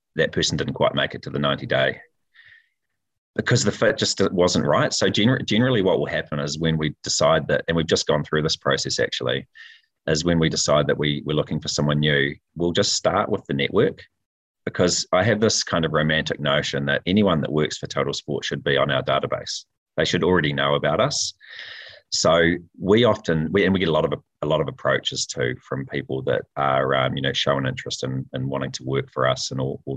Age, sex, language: 30-49, male, English